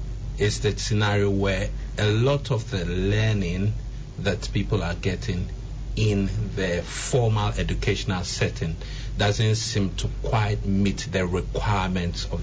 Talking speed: 125 wpm